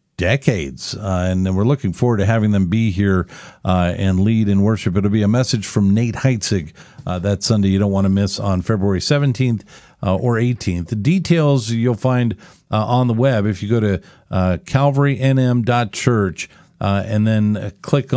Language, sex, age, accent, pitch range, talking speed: English, male, 50-69, American, 100-125 Hz, 185 wpm